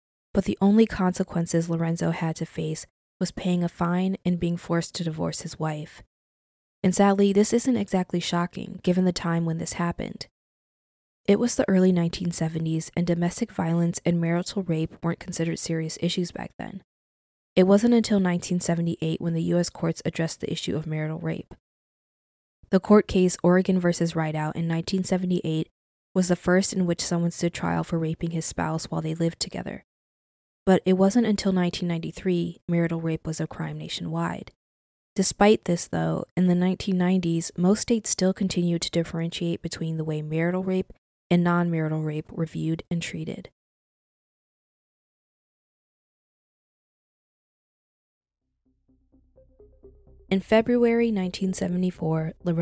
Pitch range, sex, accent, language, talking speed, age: 160-185 Hz, female, American, English, 140 wpm, 20-39